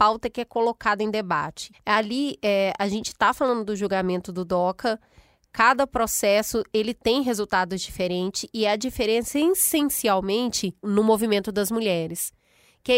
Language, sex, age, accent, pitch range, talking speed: Portuguese, female, 20-39, Brazilian, 205-260 Hz, 150 wpm